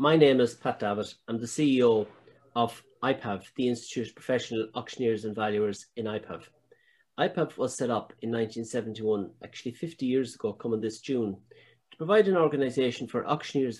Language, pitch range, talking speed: English, 115-150 Hz, 165 wpm